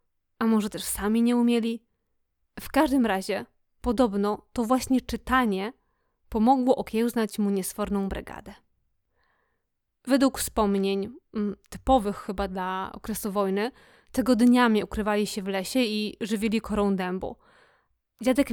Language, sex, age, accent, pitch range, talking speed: Polish, female, 20-39, native, 210-250 Hz, 115 wpm